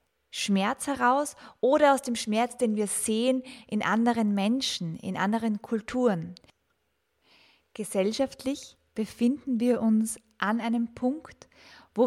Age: 20-39